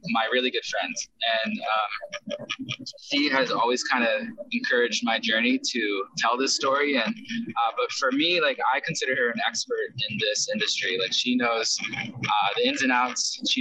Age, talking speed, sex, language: 20-39, 180 wpm, male, English